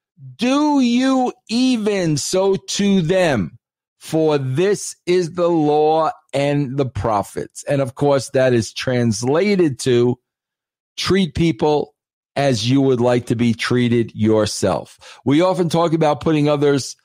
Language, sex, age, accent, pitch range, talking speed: English, male, 50-69, American, 130-180 Hz, 130 wpm